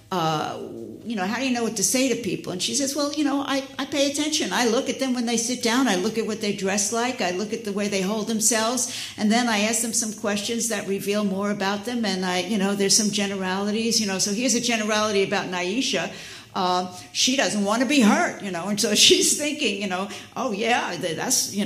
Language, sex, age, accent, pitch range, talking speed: English, female, 60-79, American, 200-260 Hz, 250 wpm